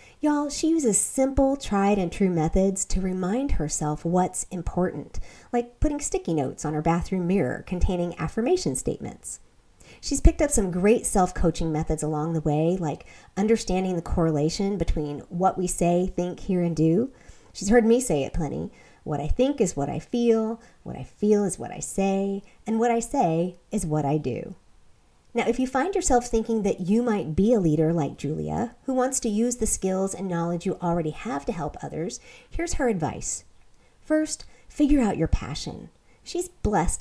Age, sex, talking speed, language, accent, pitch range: 40-59, female, 180 wpm, English, American, 170-235 Hz